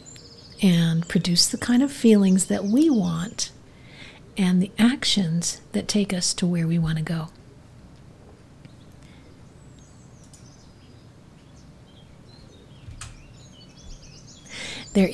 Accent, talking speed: American, 85 wpm